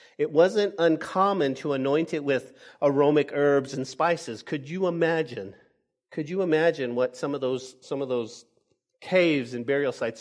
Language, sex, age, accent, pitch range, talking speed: English, male, 50-69, American, 130-185 Hz, 165 wpm